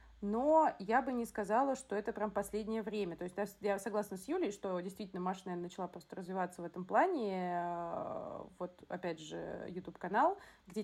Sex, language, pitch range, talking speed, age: female, Russian, 190-235 Hz, 175 wpm, 30-49